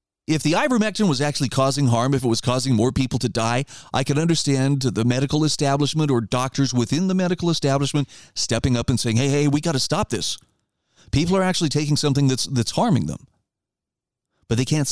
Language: English